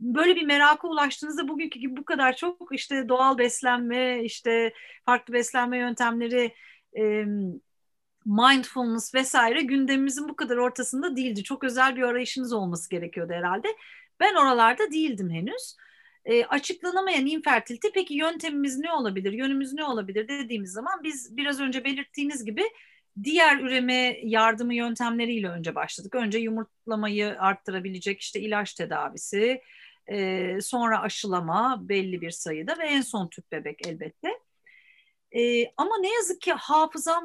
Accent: native